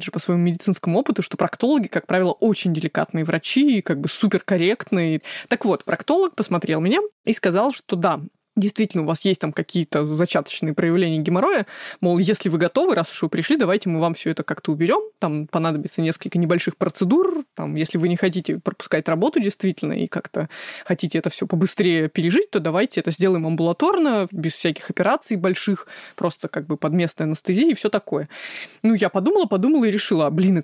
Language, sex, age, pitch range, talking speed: Russian, female, 20-39, 170-205 Hz, 185 wpm